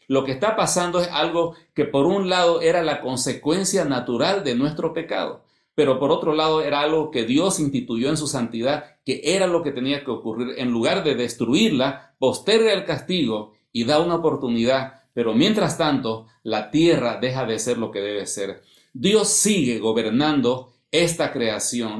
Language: Spanish